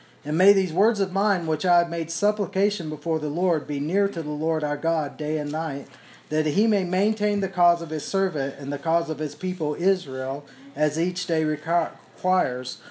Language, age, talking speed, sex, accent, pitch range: English, 50-69, 205 wpm, male, American, 150-195 Hz